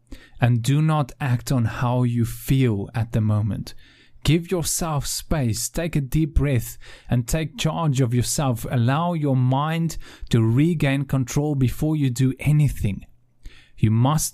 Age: 30-49